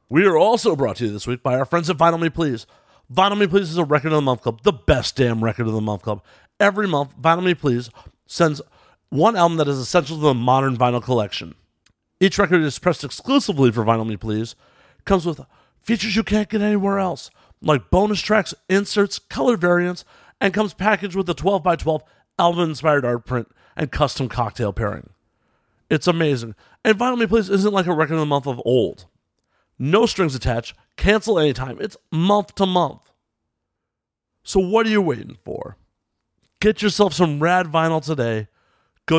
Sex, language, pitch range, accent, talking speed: male, English, 130-190 Hz, American, 185 wpm